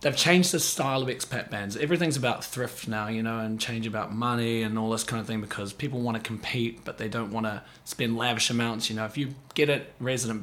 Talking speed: 245 wpm